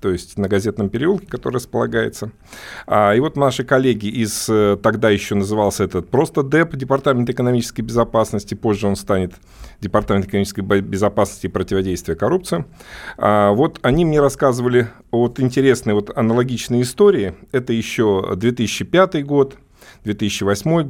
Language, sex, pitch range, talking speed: Russian, male, 105-140 Hz, 125 wpm